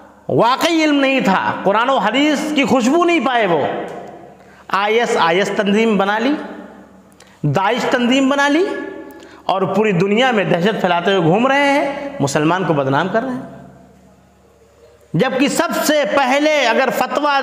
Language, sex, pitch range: English, male, 200-275 Hz